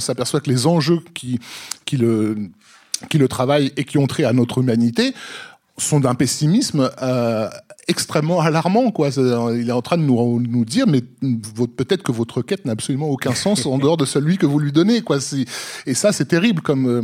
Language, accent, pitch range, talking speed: French, French, 125-170 Hz, 195 wpm